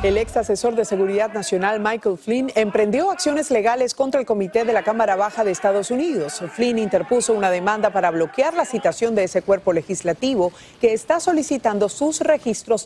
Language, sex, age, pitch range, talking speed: Spanish, female, 40-59, 175-240 Hz, 175 wpm